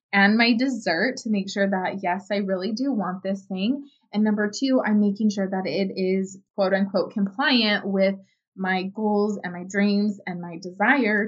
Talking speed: 185 wpm